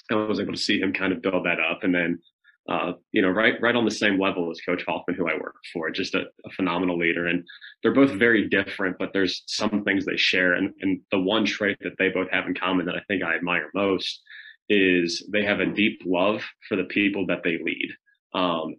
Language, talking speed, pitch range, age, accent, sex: English, 240 wpm, 90-100 Hz, 30-49, American, male